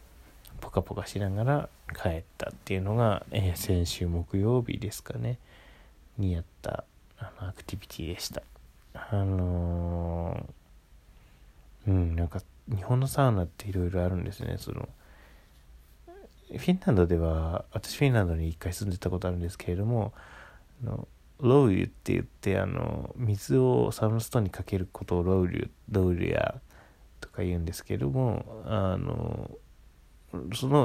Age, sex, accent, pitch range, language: 20-39, male, native, 85-120 Hz, Japanese